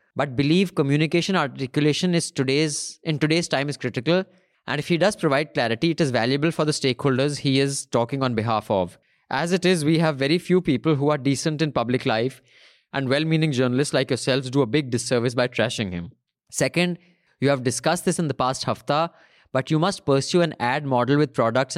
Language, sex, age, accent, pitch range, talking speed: English, male, 20-39, Indian, 130-170 Hz, 200 wpm